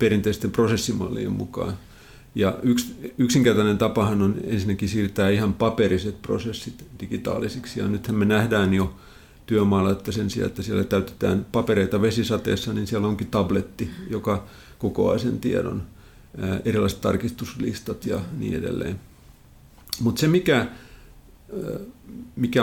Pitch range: 100-120 Hz